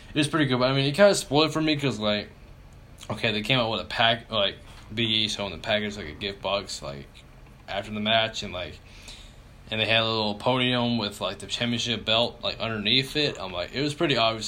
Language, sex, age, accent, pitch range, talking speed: English, male, 20-39, American, 105-120 Hz, 240 wpm